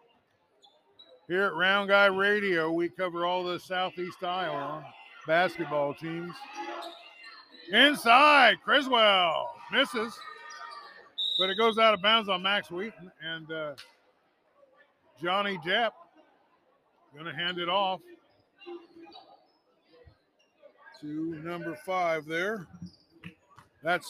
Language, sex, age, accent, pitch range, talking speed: English, male, 50-69, American, 180-295 Hz, 95 wpm